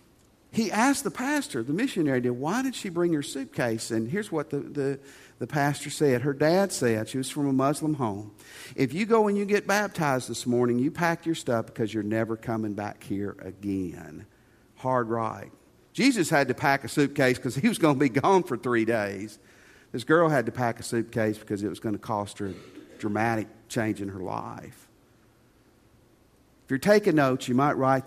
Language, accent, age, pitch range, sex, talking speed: English, American, 50-69, 115-155 Hz, male, 200 wpm